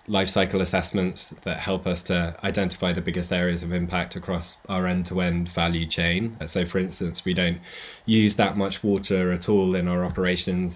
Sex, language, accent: male, English, British